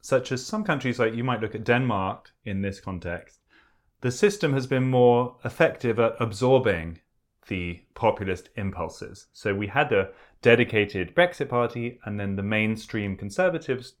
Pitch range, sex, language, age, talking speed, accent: 100-130 Hz, male, English, 30-49, 155 wpm, British